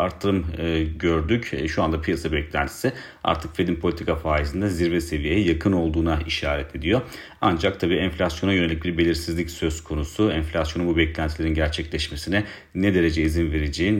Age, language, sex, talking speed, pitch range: 40-59, Turkish, male, 145 wpm, 80-95 Hz